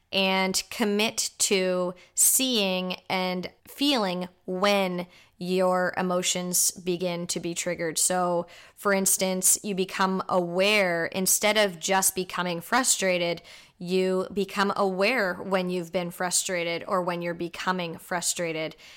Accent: American